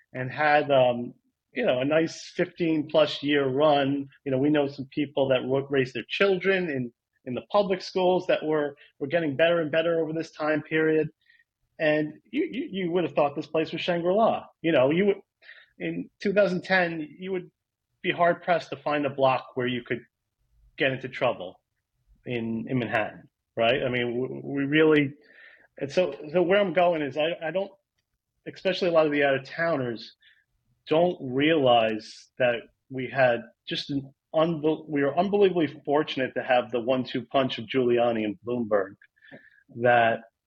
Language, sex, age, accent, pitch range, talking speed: English, male, 30-49, American, 125-165 Hz, 170 wpm